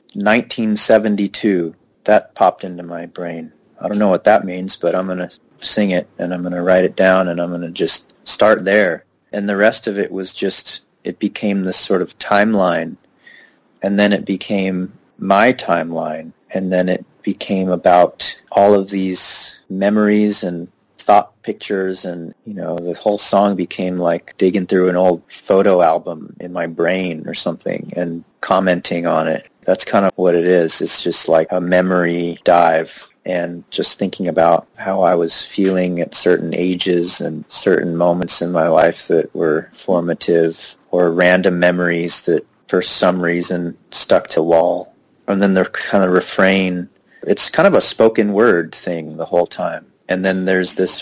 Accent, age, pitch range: American, 30-49, 85-95 Hz